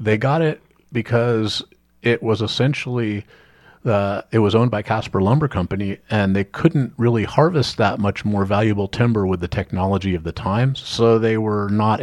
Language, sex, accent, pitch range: English, male, American, 90-115 Hz